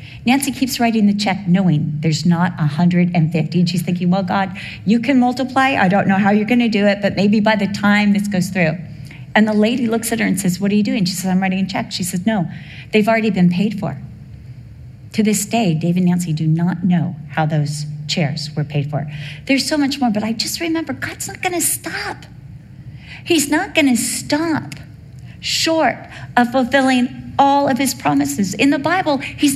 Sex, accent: female, American